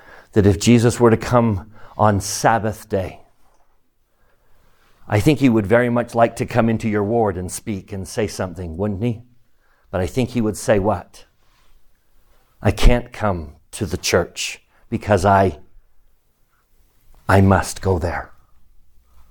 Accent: American